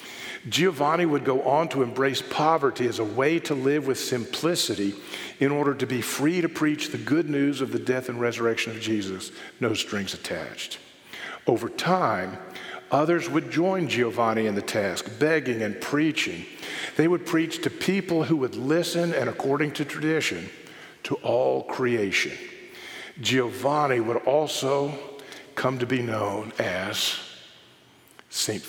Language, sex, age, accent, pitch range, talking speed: English, male, 50-69, American, 125-160 Hz, 145 wpm